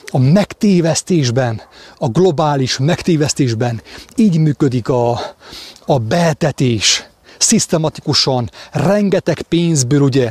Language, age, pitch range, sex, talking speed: English, 30-49, 120-160 Hz, male, 80 wpm